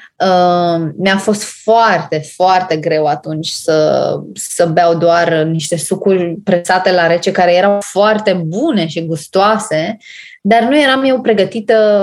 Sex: female